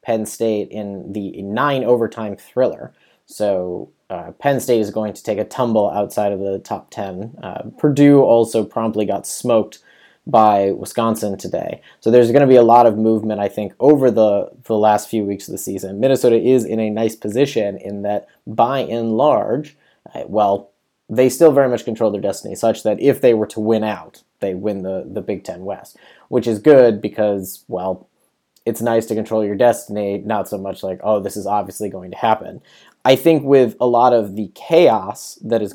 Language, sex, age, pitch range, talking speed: English, male, 30-49, 105-120 Hz, 195 wpm